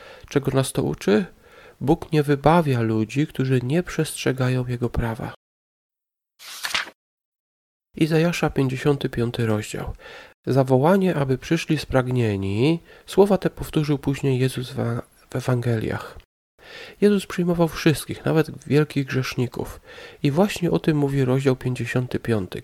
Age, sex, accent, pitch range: 40-59, male, native, 120-155 Hz